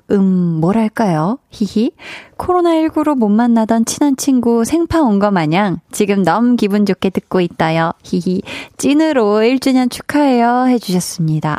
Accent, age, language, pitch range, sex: native, 20-39, Korean, 190-275 Hz, female